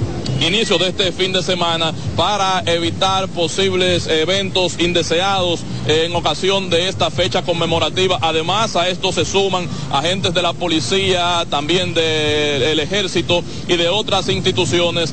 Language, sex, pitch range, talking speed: Spanish, male, 160-185 Hz, 135 wpm